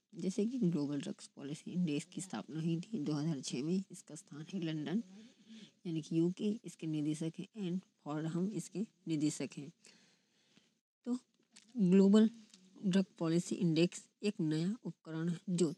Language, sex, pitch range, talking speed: Hindi, female, 165-210 Hz, 145 wpm